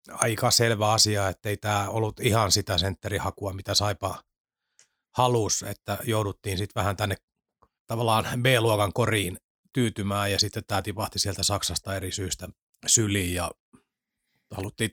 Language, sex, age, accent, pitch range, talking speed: Finnish, male, 30-49, native, 100-115 Hz, 135 wpm